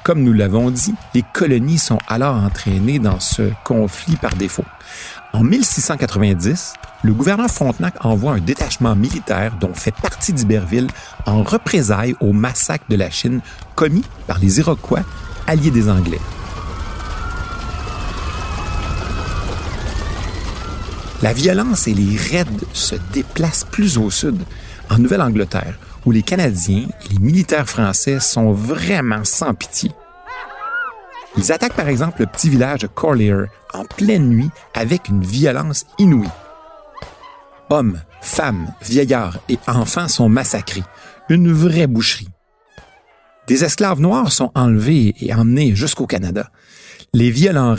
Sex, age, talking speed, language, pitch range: male, 50-69, 125 wpm, French, 100-145 Hz